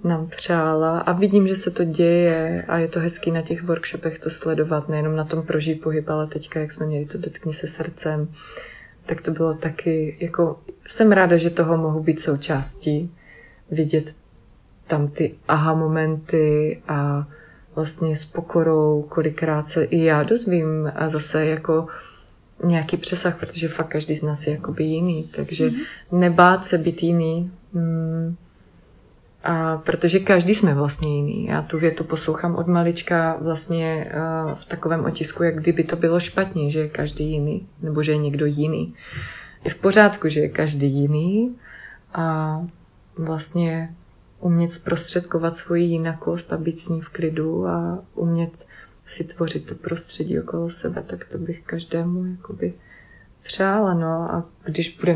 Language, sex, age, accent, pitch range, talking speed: Czech, female, 20-39, native, 155-170 Hz, 155 wpm